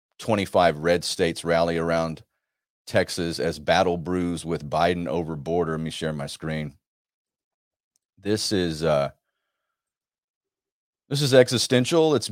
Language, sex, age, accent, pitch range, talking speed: English, male, 40-59, American, 90-115 Hz, 110 wpm